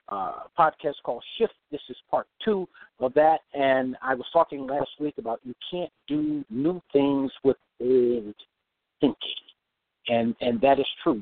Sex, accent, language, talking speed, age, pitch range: male, American, English, 165 wpm, 50-69, 120-155 Hz